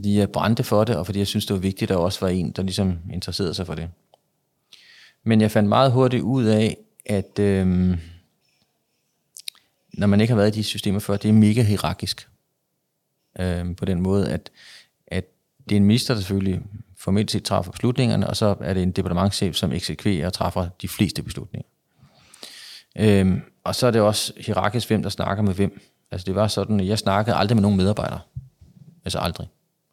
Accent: native